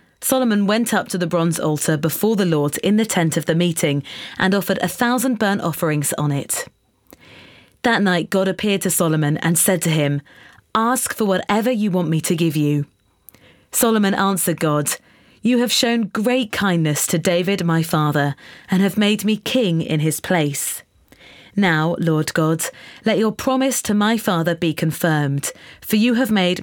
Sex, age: female, 30-49